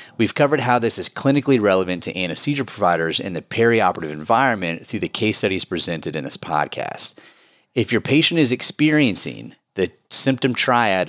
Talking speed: 160 wpm